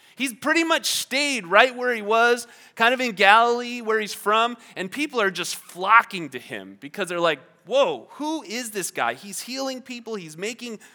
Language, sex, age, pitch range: English, male, 30-49, 150-230 Hz